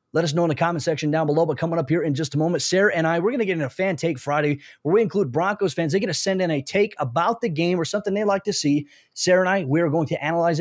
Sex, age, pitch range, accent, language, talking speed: male, 20-39, 150-180 Hz, American, English, 330 wpm